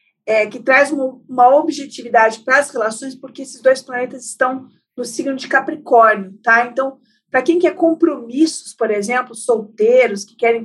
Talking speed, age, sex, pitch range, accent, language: 165 wpm, 50-69, female, 225-275 Hz, Brazilian, Portuguese